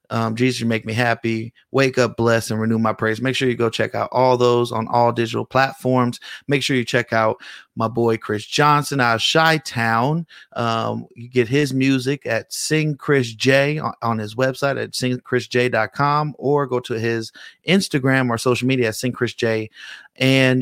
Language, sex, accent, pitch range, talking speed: English, male, American, 115-140 Hz, 190 wpm